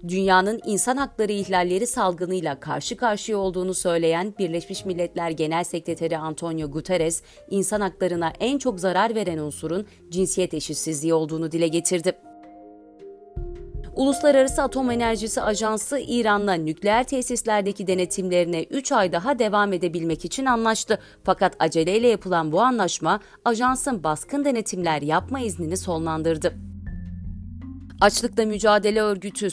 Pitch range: 170-220 Hz